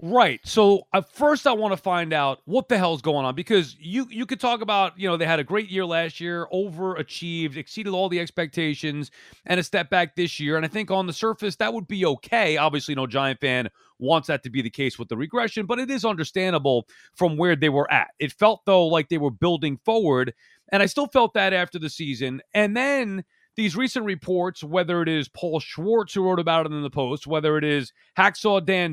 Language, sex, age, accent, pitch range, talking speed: English, male, 30-49, American, 155-215 Hz, 230 wpm